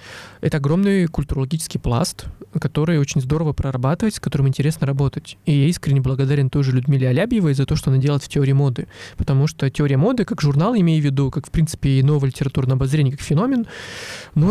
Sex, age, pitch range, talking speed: male, 20-39, 135-155 Hz, 190 wpm